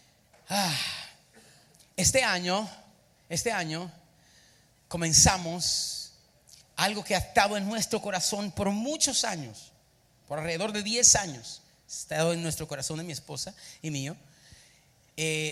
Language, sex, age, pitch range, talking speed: Spanish, male, 40-59, 145-215 Hz, 125 wpm